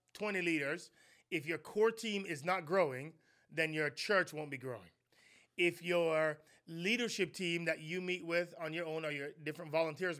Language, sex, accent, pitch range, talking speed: English, male, American, 155-185 Hz, 175 wpm